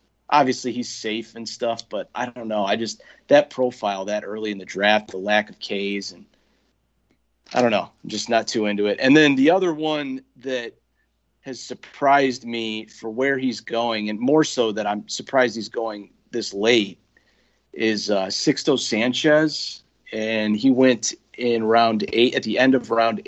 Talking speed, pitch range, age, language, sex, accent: 180 wpm, 105-135 Hz, 40-59, English, male, American